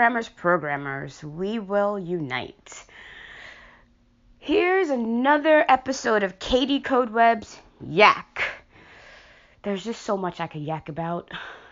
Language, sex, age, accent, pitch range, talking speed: English, female, 20-39, American, 175-240 Hz, 110 wpm